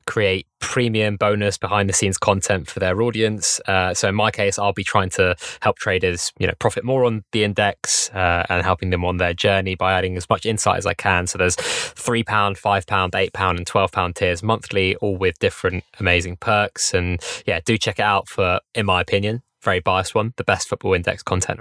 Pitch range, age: 95-110 Hz, 20-39